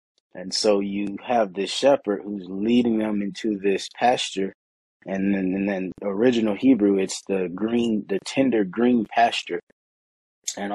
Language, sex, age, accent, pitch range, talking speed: English, male, 30-49, American, 95-110 Hz, 140 wpm